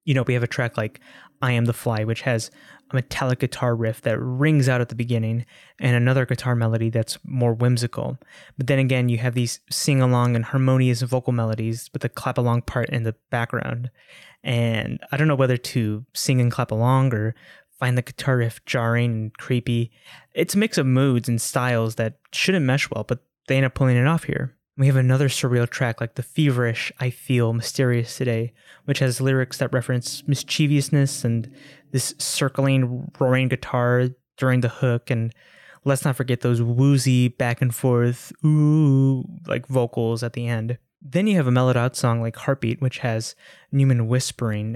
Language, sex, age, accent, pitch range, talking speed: English, male, 10-29, American, 120-135 Hz, 185 wpm